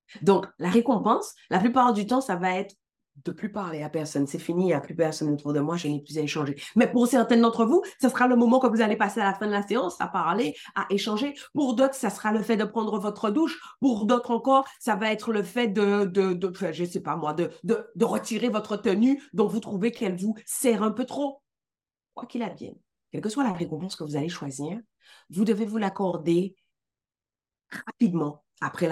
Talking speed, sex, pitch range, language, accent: 235 wpm, female, 155-230 Hz, French, French